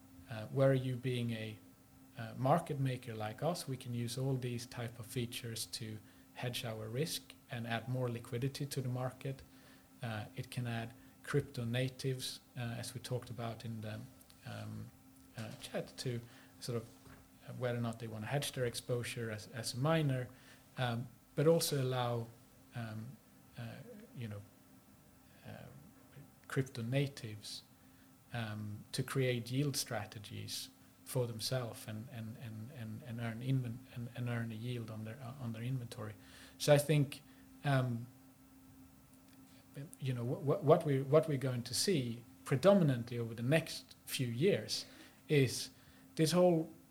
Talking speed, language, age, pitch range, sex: 155 wpm, English, 40-59, 115-135 Hz, male